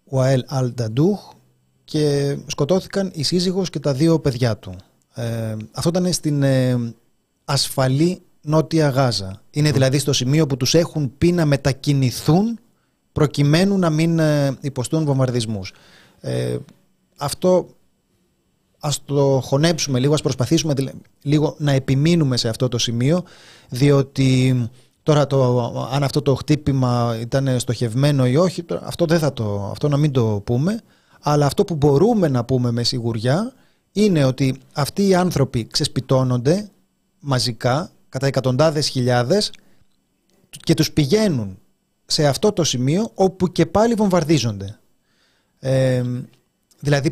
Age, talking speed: 30-49, 120 wpm